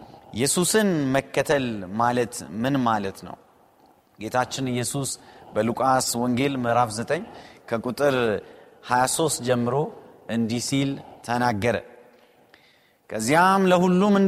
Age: 30-49